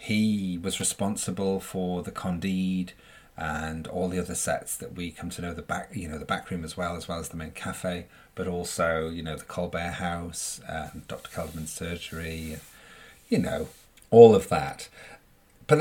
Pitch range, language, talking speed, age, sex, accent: 90-120 Hz, English, 180 wpm, 40-59, male, British